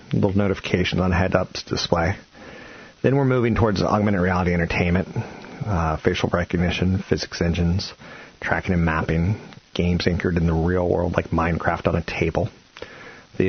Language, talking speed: English, 145 wpm